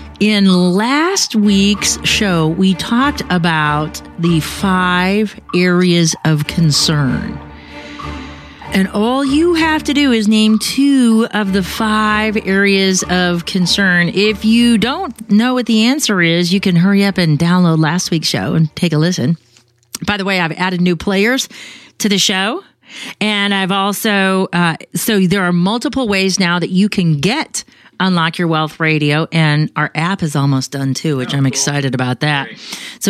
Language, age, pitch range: English, 40-59, 175-235 Hz